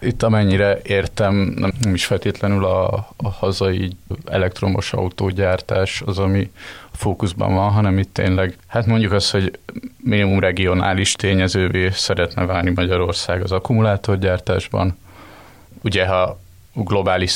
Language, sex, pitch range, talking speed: Hungarian, male, 95-105 Hz, 115 wpm